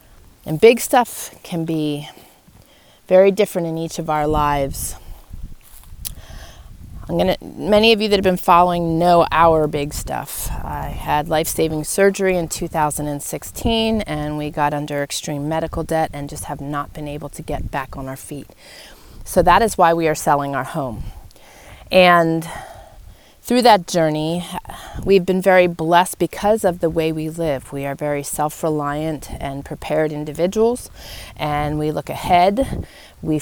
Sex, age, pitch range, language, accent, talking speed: female, 30-49, 145-175 Hz, English, American, 155 wpm